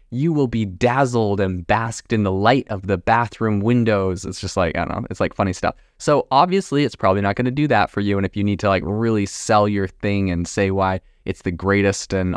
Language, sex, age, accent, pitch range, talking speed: English, male, 20-39, American, 95-110 Hz, 245 wpm